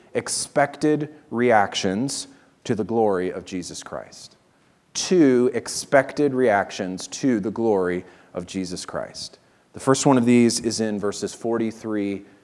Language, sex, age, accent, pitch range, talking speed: English, male, 30-49, American, 110-145 Hz, 125 wpm